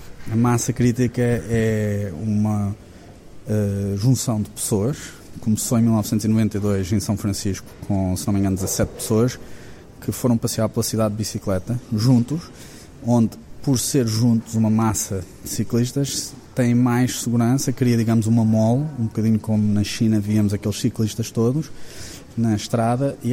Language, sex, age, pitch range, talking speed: Portuguese, male, 20-39, 105-125 Hz, 145 wpm